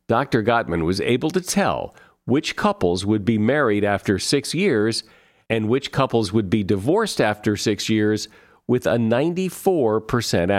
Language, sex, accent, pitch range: English, male, American, 105-145 Hz